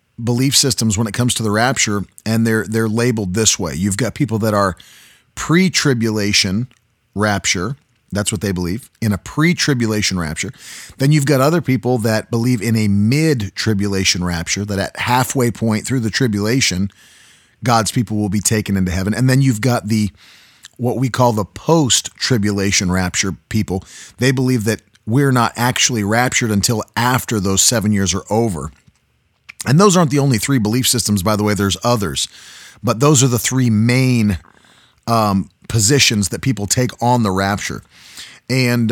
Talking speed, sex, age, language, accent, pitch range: 165 wpm, male, 40-59, English, American, 100-130 Hz